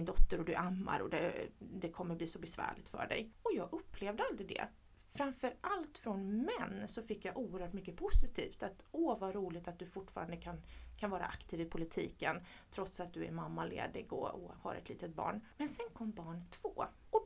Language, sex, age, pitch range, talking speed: English, female, 30-49, 180-240 Hz, 200 wpm